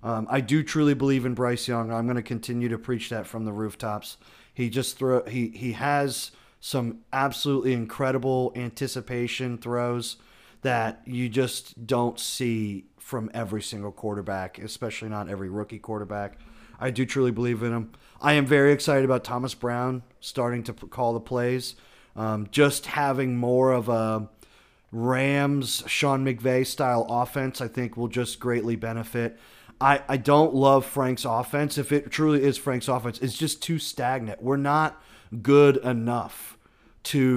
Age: 30-49